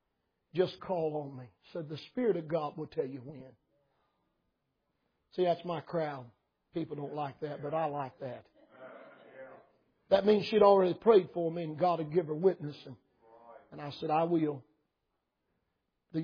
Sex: male